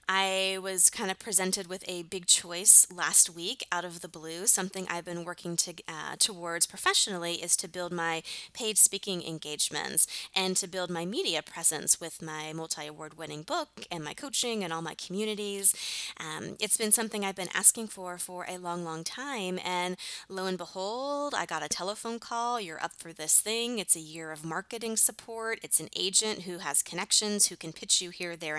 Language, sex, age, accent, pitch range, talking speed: English, female, 20-39, American, 175-225 Hz, 195 wpm